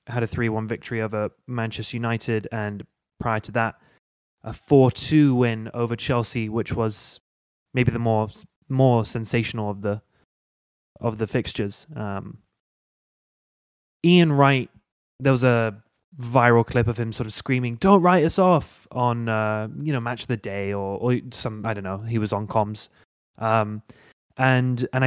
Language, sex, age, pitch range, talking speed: English, male, 20-39, 110-130 Hz, 160 wpm